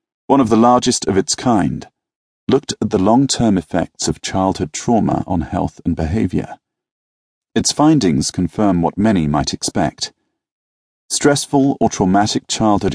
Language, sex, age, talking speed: English, male, 40-59, 145 wpm